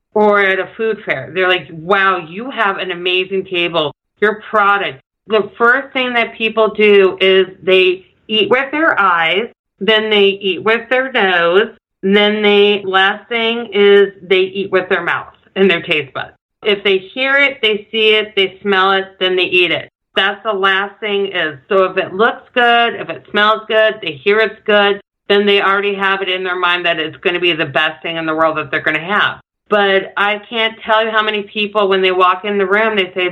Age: 40-59